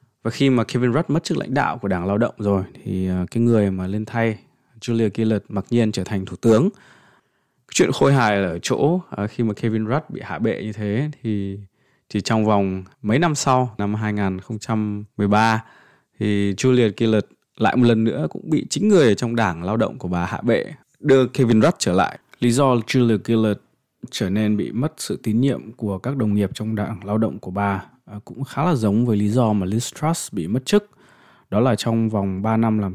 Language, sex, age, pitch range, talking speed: Vietnamese, male, 20-39, 100-120 Hz, 215 wpm